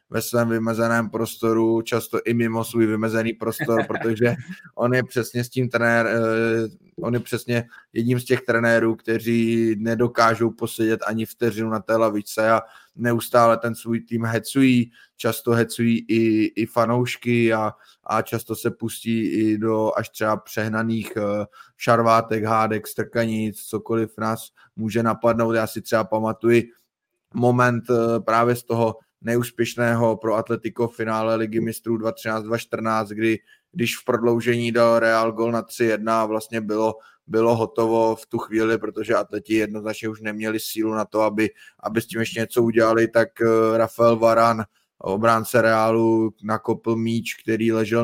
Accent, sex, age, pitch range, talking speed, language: native, male, 20-39, 110-120 Hz, 145 wpm, Czech